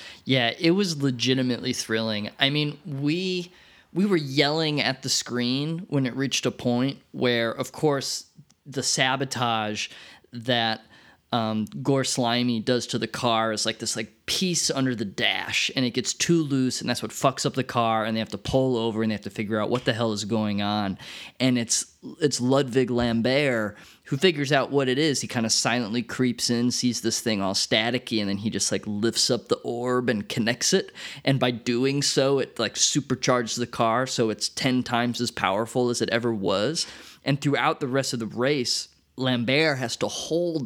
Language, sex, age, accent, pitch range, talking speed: English, male, 20-39, American, 115-140 Hz, 200 wpm